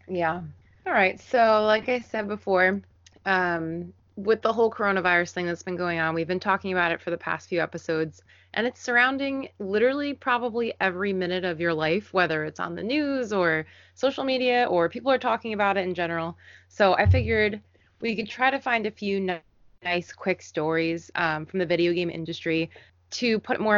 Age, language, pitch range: 20-39, English, 170-215 Hz